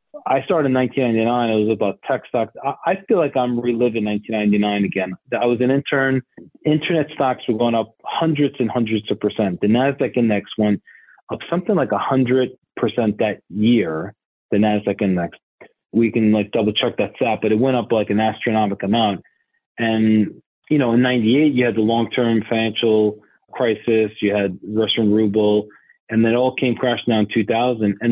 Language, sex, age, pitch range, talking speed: English, male, 30-49, 105-130 Hz, 180 wpm